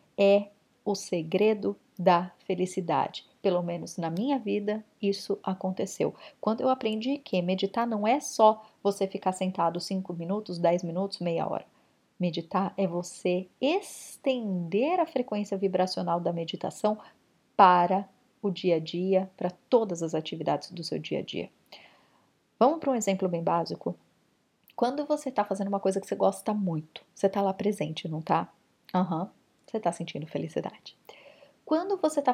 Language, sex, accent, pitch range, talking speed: Portuguese, female, Brazilian, 190-235 Hz, 150 wpm